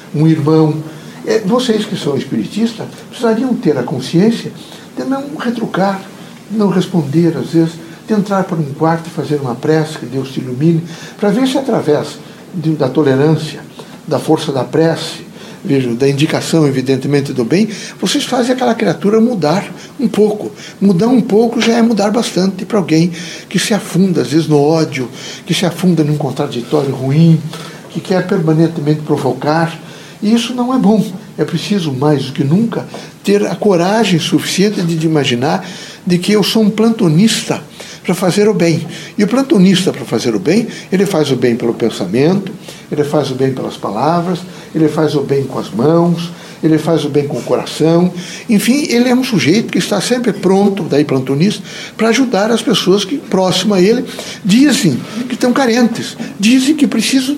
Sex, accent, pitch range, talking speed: male, Brazilian, 155-220 Hz, 175 wpm